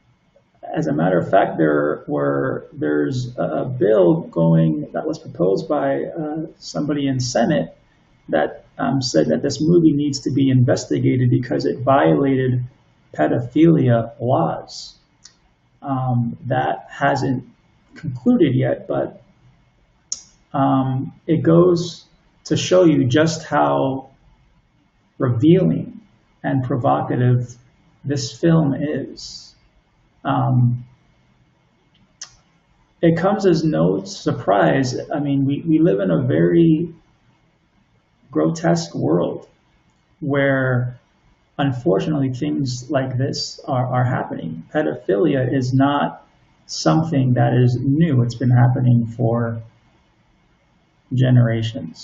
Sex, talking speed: male, 105 wpm